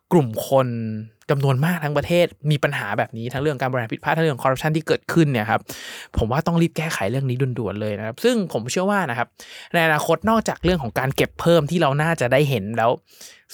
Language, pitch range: Thai, 130-165 Hz